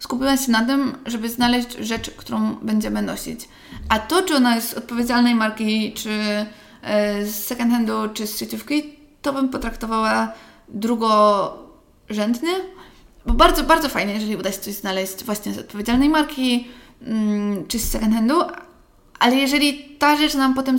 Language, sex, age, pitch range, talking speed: Polish, female, 20-39, 220-260 Hz, 155 wpm